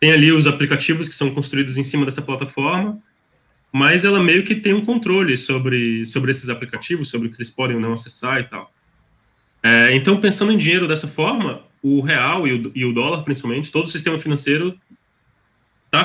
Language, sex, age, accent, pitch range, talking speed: Portuguese, male, 20-39, Brazilian, 120-155 Hz, 185 wpm